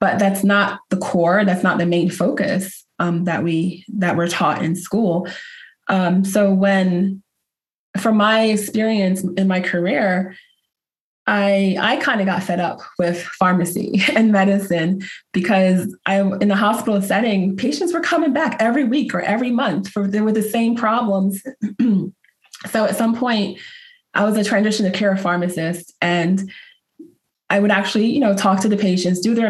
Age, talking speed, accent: 20-39, 165 wpm, American